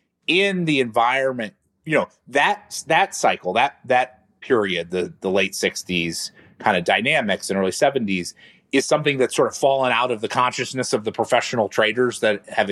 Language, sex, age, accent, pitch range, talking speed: English, male, 30-49, American, 115-140 Hz, 175 wpm